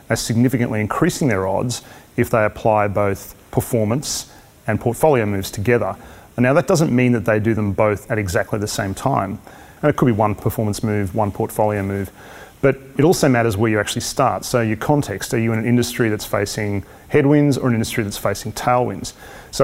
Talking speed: 200 wpm